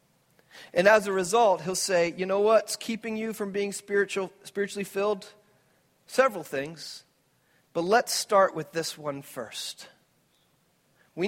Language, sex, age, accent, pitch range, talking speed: English, male, 40-59, American, 155-200 Hz, 135 wpm